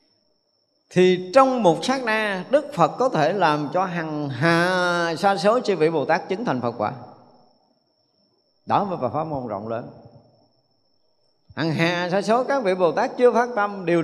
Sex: male